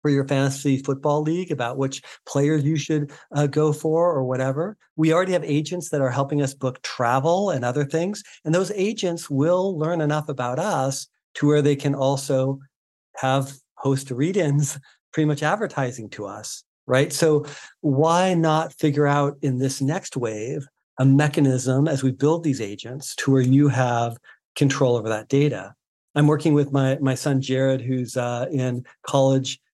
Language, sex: English, male